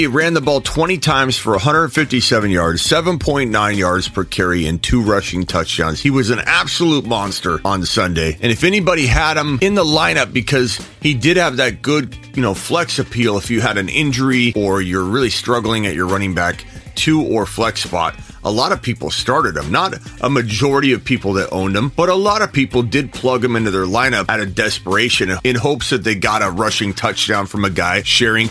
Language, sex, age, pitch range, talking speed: English, male, 30-49, 105-145 Hz, 210 wpm